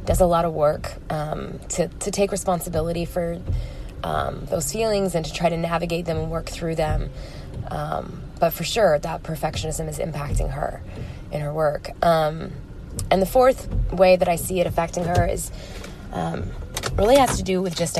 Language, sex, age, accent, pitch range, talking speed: English, female, 20-39, American, 155-180 Hz, 185 wpm